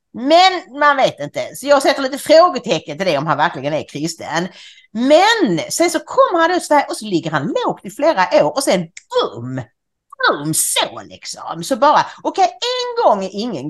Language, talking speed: English, 200 wpm